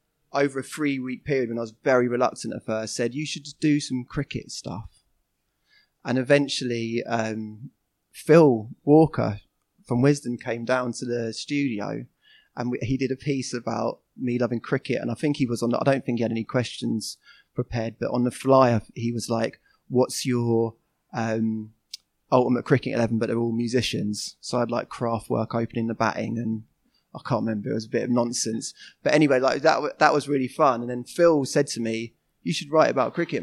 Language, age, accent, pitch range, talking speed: English, 20-39, British, 115-135 Hz, 195 wpm